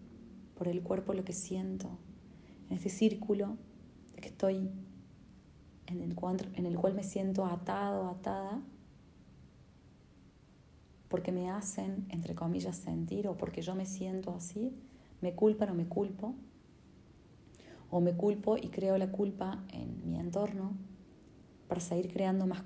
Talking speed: 130 wpm